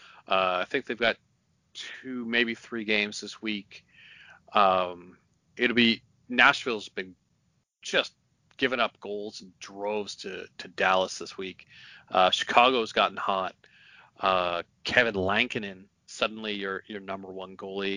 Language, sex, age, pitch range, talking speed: English, male, 40-59, 90-105 Hz, 135 wpm